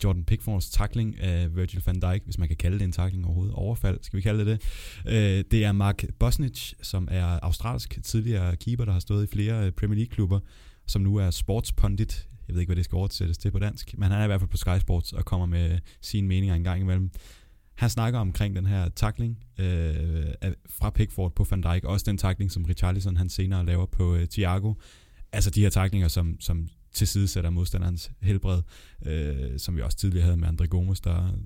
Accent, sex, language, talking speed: native, male, Danish, 205 wpm